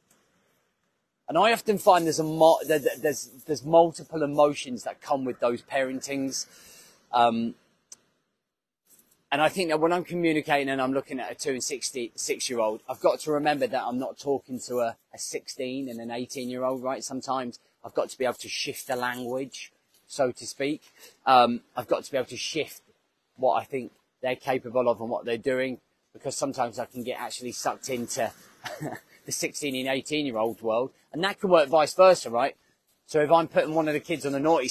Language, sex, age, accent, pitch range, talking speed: English, male, 30-49, British, 125-155 Hz, 190 wpm